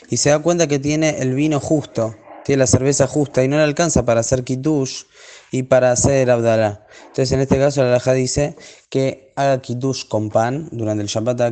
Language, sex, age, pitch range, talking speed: Spanish, male, 20-39, 125-145 Hz, 210 wpm